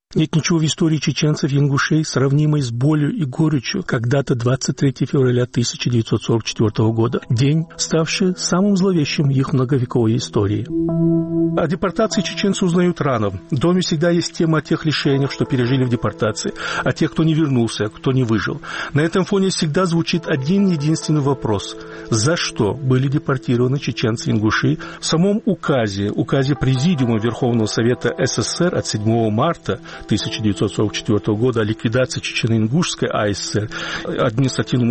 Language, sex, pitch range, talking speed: Russian, male, 125-165 Hz, 140 wpm